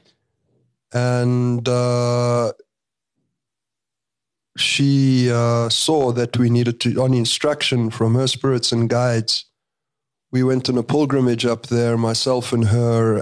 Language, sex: English, male